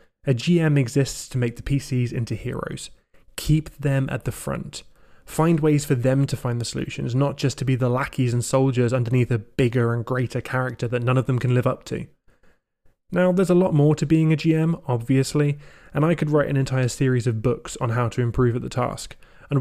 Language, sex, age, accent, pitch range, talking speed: English, male, 20-39, British, 125-150 Hz, 215 wpm